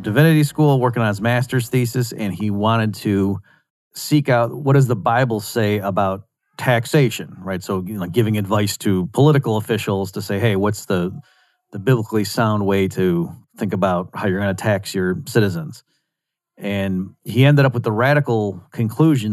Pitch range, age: 100-130 Hz, 40-59